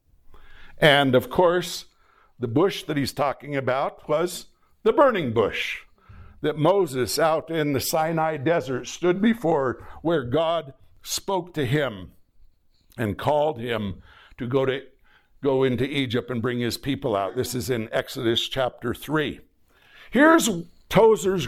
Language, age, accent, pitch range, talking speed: English, 60-79, American, 125-175 Hz, 135 wpm